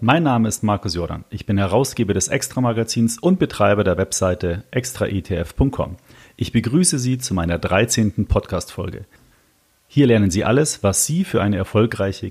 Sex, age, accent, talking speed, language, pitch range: male, 40-59, German, 155 wpm, German, 95-120 Hz